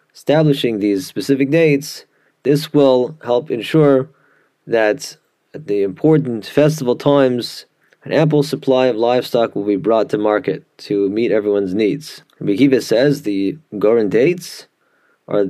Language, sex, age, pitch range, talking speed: English, male, 30-49, 110-145 Hz, 130 wpm